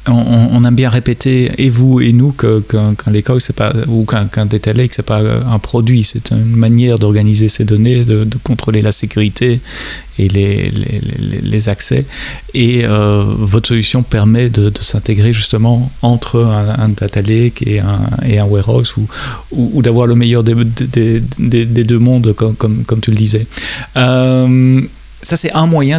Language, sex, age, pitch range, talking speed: French, male, 30-49, 110-125 Hz, 190 wpm